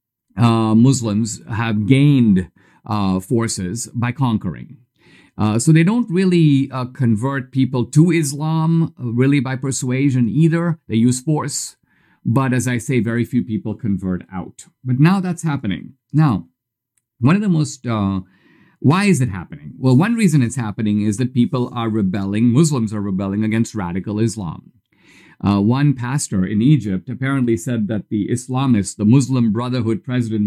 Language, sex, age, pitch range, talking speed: English, male, 50-69, 110-140 Hz, 155 wpm